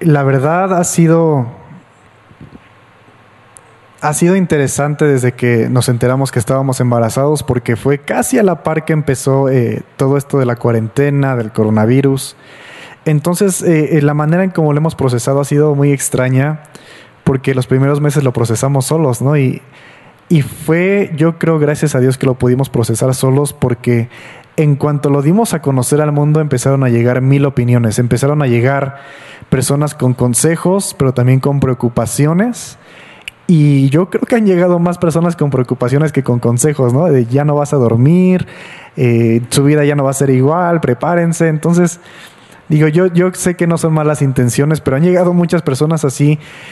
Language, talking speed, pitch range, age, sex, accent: Spanish, 170 wpm, 130-155 Hz, 30-49, male, Mexican